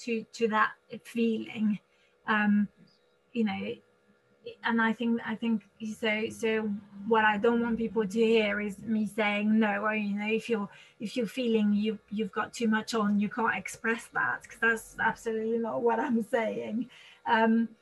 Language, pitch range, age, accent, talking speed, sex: English, 210-235 Hz, 30-49, British, 170 wpm, female